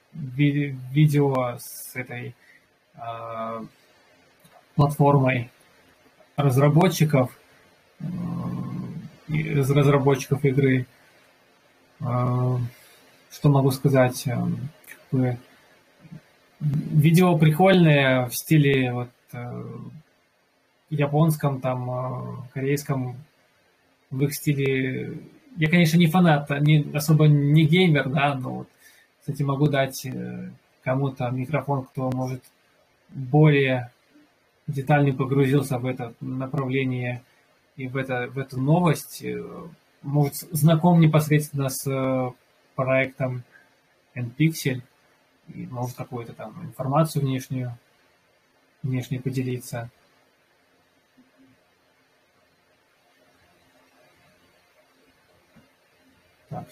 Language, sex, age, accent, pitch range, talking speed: Russian, male, 20-39, native, 110-145 Hz, 70 wpm